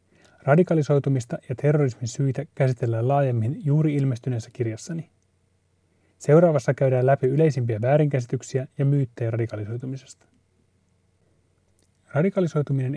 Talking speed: 85 wpm